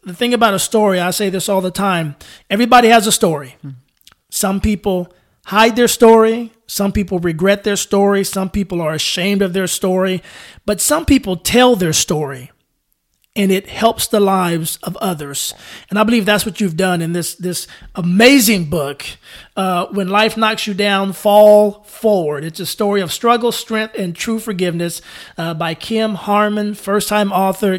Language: English